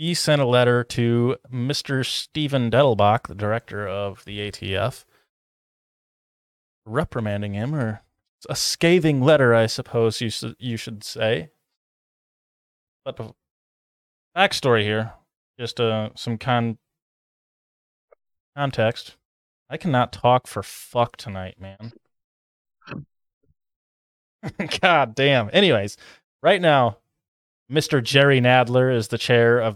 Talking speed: 110 wpm